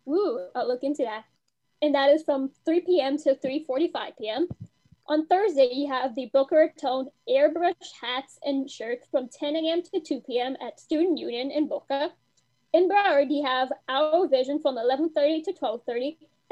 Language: English